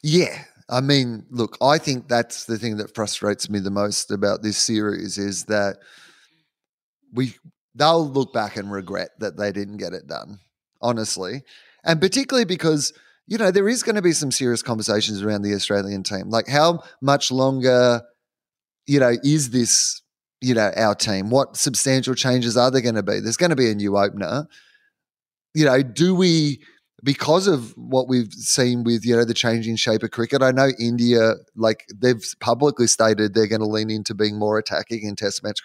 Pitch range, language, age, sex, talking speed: 105-135 Hz, English, 30-49, male, 185 wpm